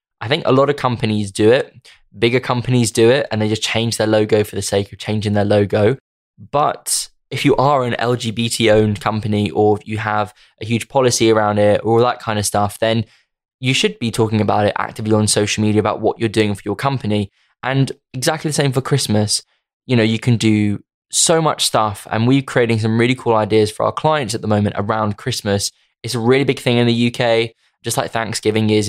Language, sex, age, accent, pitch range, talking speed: English, male, 20-39, British, 105-130 Hz, 215 wpm